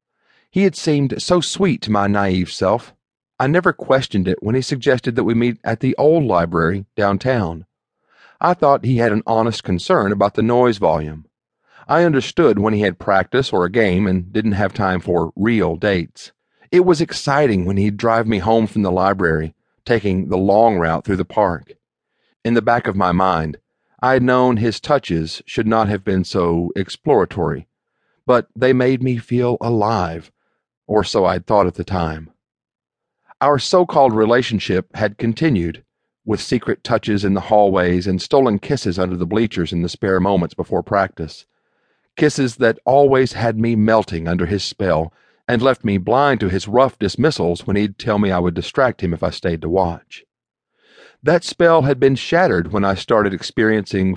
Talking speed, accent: 180 wpm, American